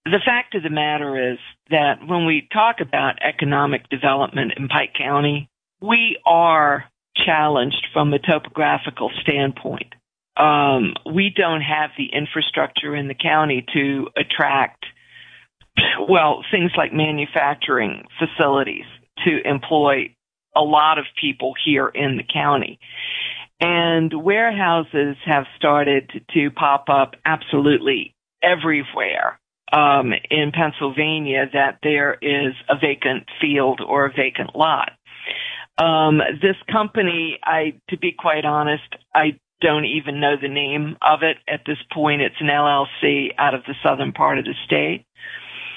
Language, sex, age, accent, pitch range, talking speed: English, female, 50-69, American, 140-160 Hz, 130 wpm